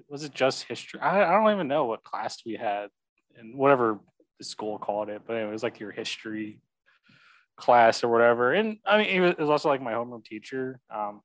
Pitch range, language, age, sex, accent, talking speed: 110-150 Hz, English, 20-39, male, American, 215 wpm